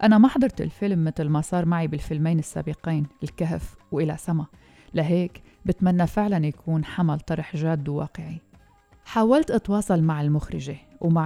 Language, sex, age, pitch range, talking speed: Arabic, female, 30-49, 150-180 Hz, 140 wpm